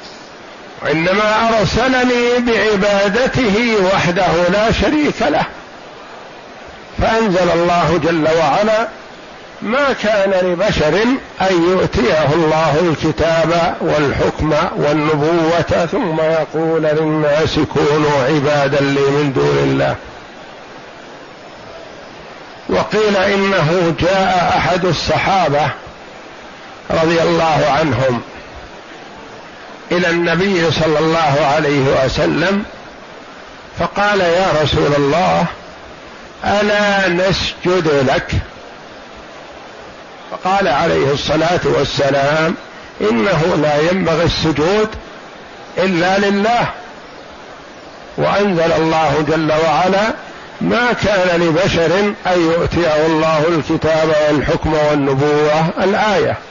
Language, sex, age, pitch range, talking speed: Arabic, male, 60-79, 155-195 Hz, 80 wpm